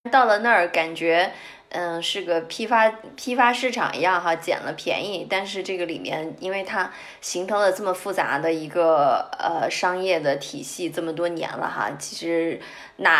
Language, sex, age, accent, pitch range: Chinese, female, 20-39, native, 175-235 Hz